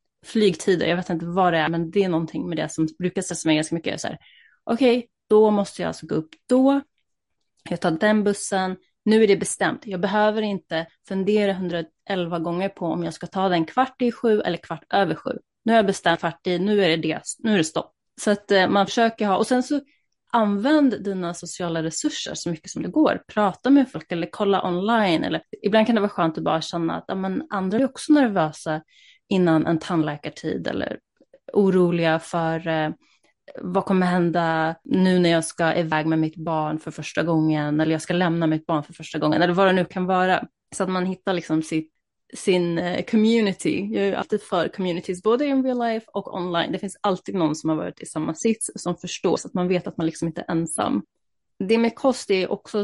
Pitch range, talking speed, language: 165-210 Hz, 215 wpm, Swedish